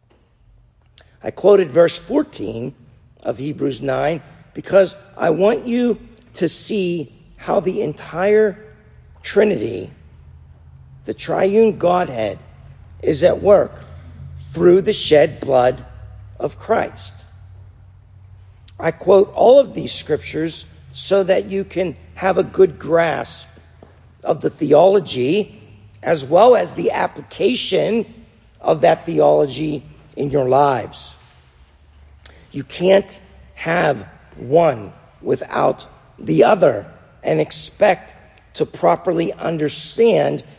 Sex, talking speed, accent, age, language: male, 100 wpm, American, 50-69, English